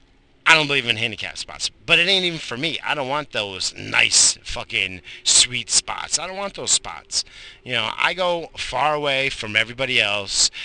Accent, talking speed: American, 190 wpm